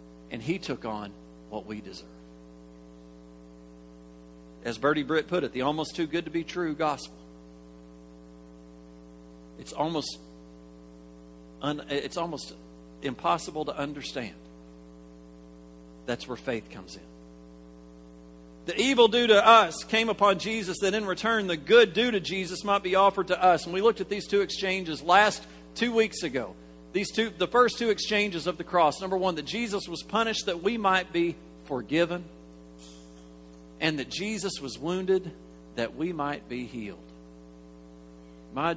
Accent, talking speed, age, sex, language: American, 150 wpm, 50-69, male, English